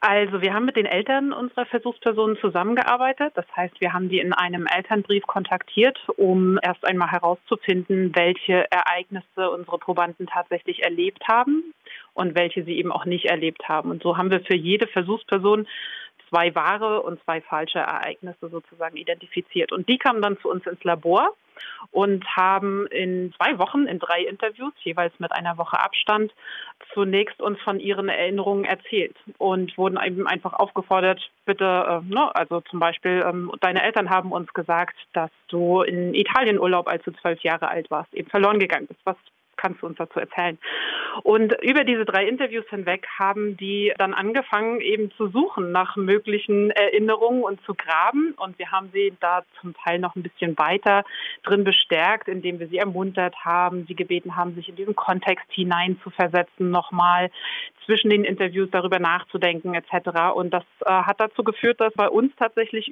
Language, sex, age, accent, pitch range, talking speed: German, female, 40-59, German, 175-210 Hz, 170 wpm